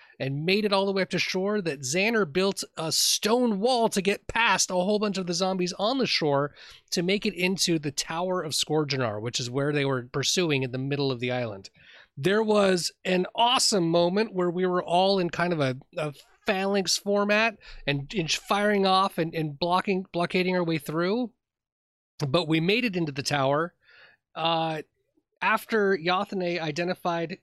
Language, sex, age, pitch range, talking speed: English, male, 30-49, 150-195 Hz, 185 wpm